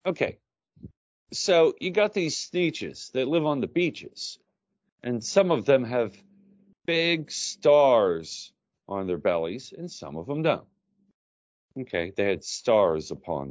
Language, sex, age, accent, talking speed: English, male, 40-59, American, 140 wpm